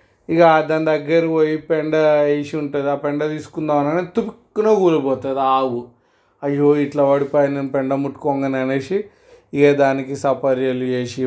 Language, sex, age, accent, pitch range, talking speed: Telugu, male, 30-49, native, 125-150 Hz, 120 wpm